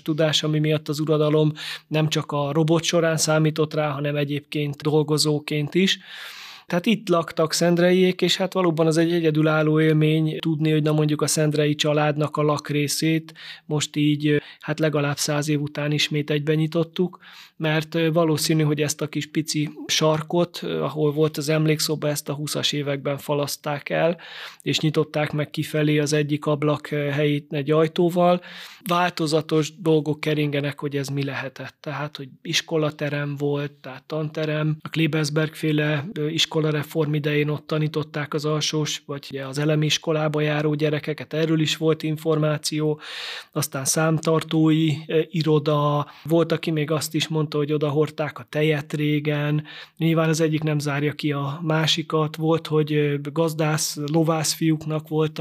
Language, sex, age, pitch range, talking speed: Hungarian, male, 20-39, 150-160 Hz, 145 wpm